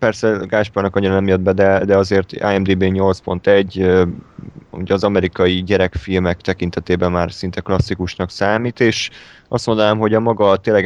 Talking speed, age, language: 150 wpm, 20-39, Hungarian